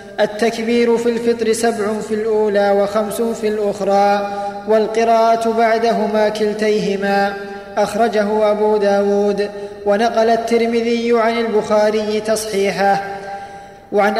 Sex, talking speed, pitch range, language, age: male, 90 wpm, 205-230 Hz, Arabic, 20-39